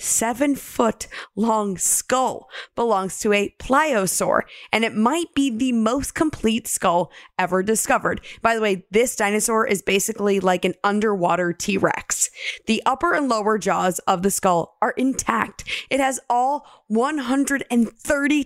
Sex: female